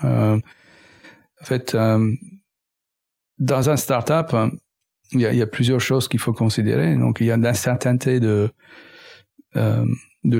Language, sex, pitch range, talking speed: French, male, 115-135 Hz, 135 wpm